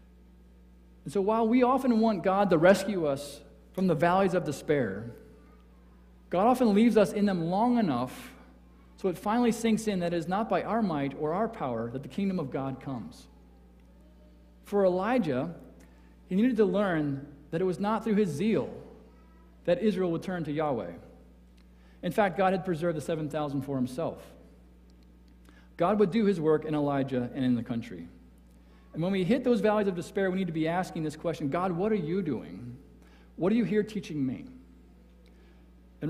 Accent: American